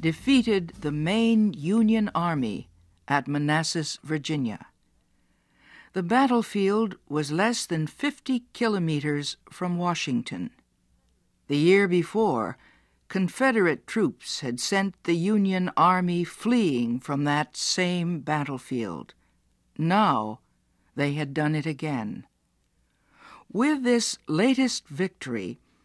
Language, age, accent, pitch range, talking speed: English, 60-79, American, 145-210 Hz, 95 wpm